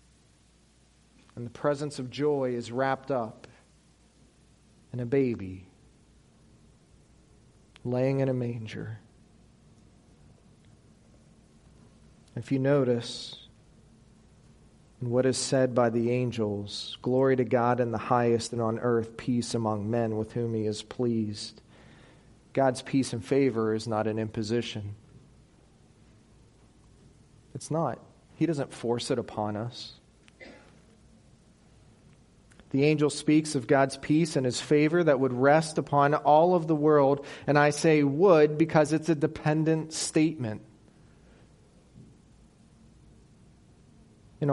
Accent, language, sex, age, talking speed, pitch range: American, English, male, 40-59, 115 wpm, 115-140 Hz